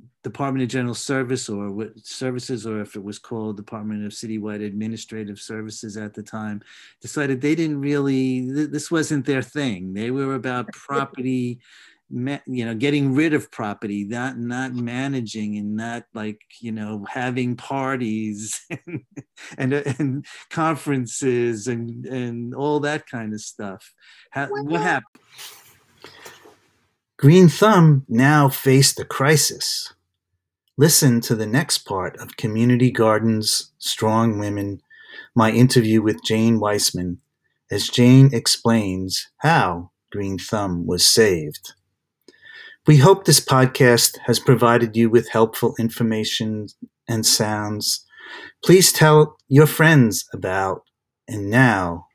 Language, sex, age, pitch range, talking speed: English, male, 50-69, 110-135 Hz, 125 wpm